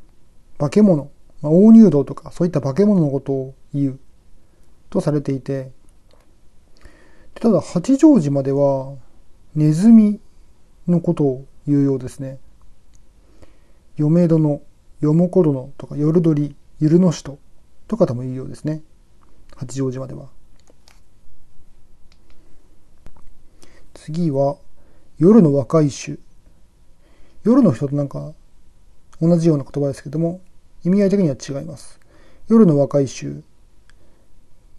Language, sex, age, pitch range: Japanese, male, 40-59, 110-160 Hz